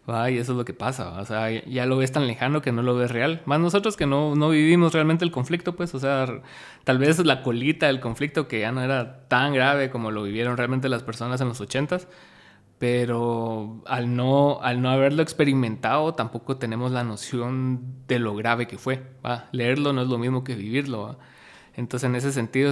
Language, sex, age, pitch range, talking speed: Spanish, male, 20-39, 120-145 Hz, 210 wpm